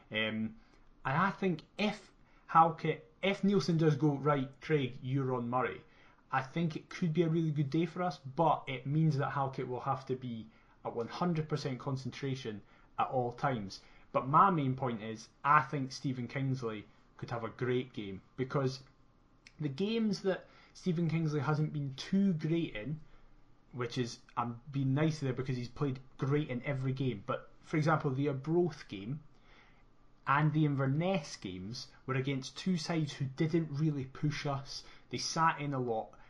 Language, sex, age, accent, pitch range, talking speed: English, male, 30-49, British, 130-160 Hz, 170 wpm